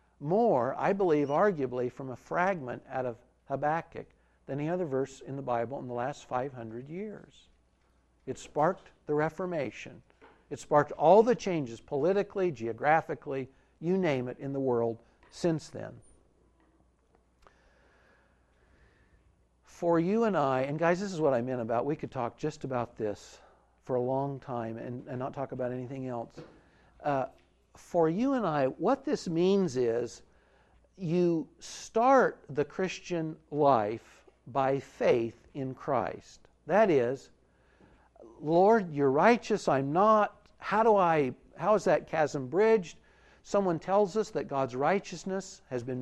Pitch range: 125-180 Hz